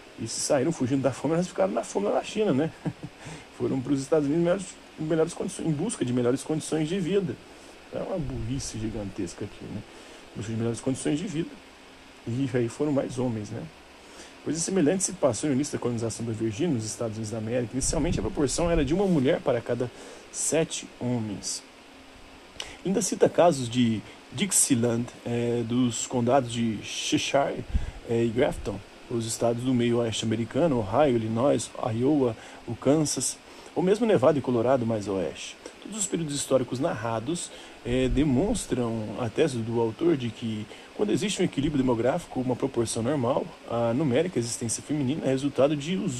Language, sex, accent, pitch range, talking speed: Portuguese, male, Brazilian, 115-150 Hz, 175 wpm